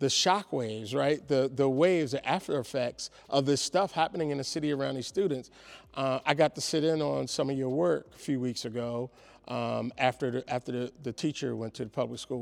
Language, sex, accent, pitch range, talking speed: English, male, American, 130-155 Hz, 225 wpm